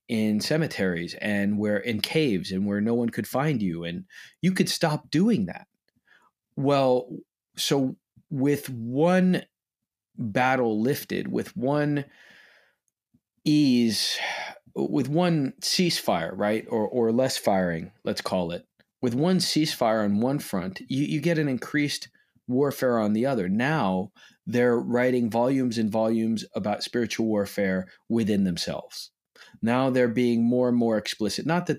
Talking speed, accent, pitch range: 140 wpm, American, 105-140 Hz